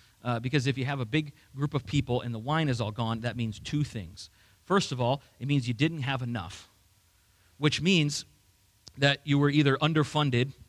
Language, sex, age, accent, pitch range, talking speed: English, male, 40-59, American, 105-155 Hz, 200 wpm